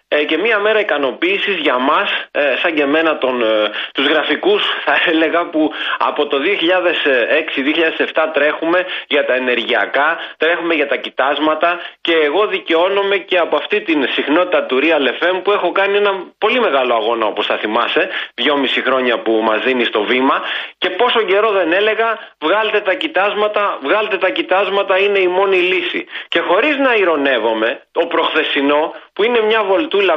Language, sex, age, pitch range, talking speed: Greek, male, 30-49, 150-230 Hz, 155 wpm